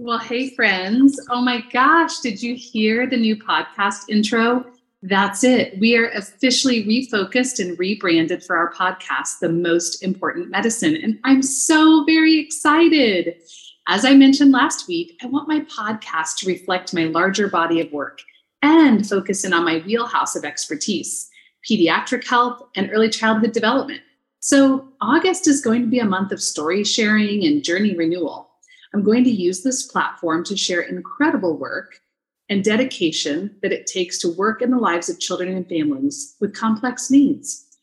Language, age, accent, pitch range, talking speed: English, 30-49, American, 185-260 Hz, 165 wpm